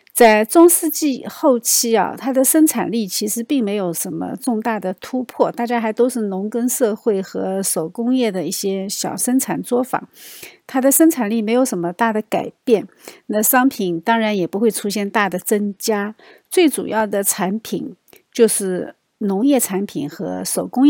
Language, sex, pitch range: Chinese, female, 205-260 Hz